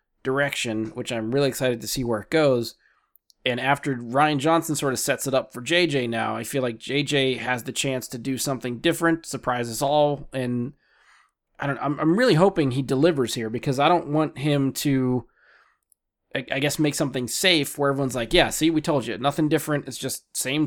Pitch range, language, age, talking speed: 125-150 Hz, English, 20-39, 205 wpm